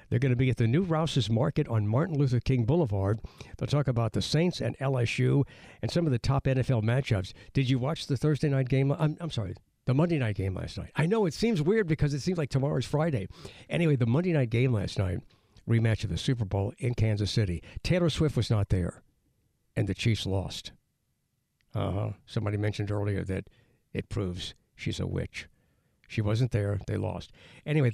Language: English